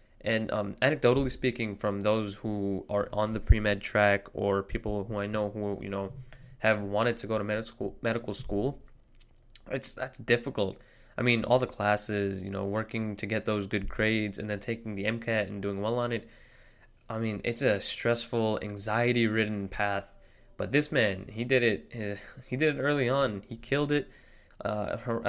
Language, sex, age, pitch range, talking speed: English, male, 20-39, 100-120 Hz, 180 wpm